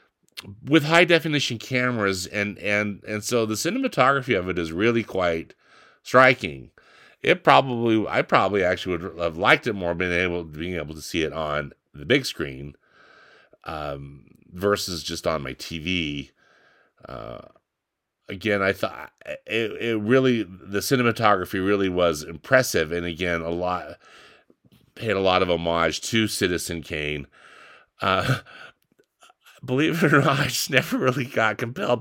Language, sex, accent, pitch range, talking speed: English, male, American, 75-110 Hz, 145 wpm